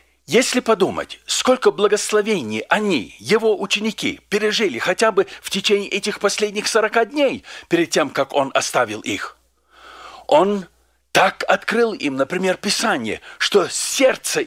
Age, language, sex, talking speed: 50-69, Russian, male, 125 wpm